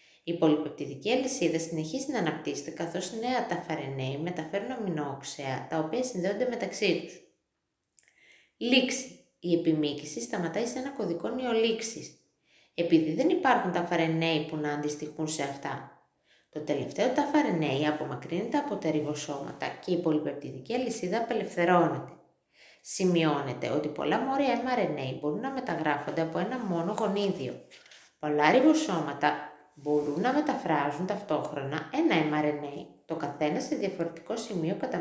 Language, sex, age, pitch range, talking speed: Greek, female, 20-39, 150-225 Hz, 125 wpm